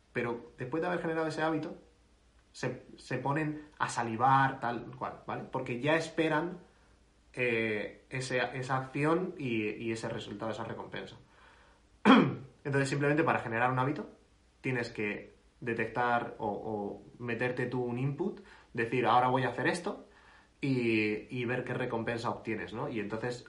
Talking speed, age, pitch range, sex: 150 wpm, 20-39, 115-145 Hz, male